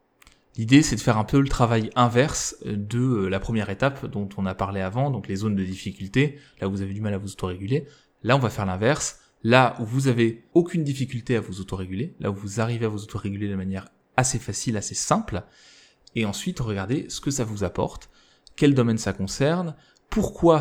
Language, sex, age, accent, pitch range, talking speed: French, male, 20-39, French, 105-135 Hz, 210 wpm